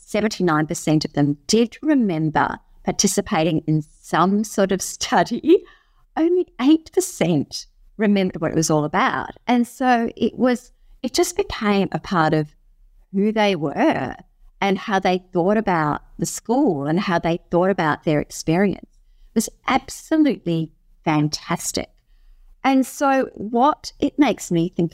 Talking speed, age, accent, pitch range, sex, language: 135 wpm, 50-69, Australian, 155-225 Hz, female, English